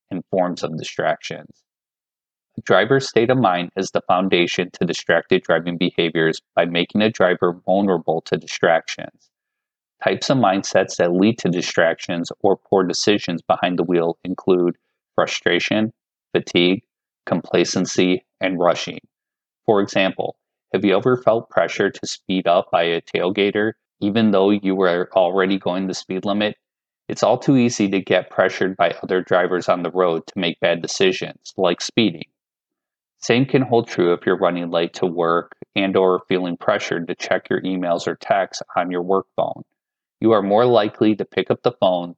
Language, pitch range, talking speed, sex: English, 85-105 Hz, 165 wpm, male